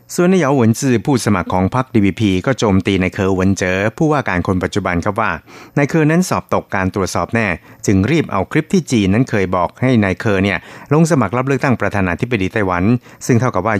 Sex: male